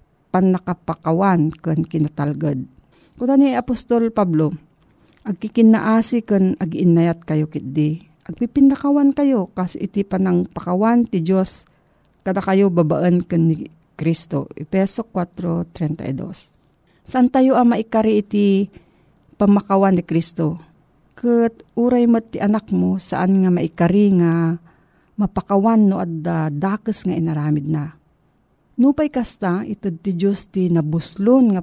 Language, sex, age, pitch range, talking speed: Filipino, female, 50-69, 165-215 Hz, 115 wpm